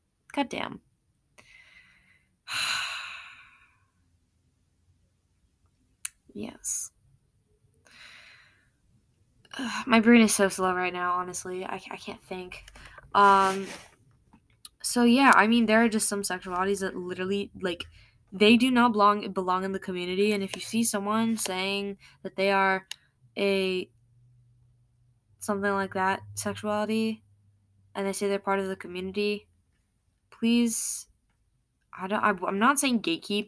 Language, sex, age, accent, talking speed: English, female, 10-29, American, 120 wpm